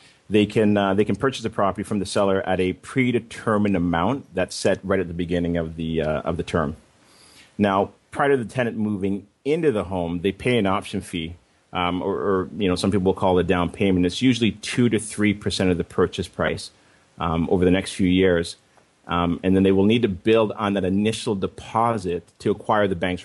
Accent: American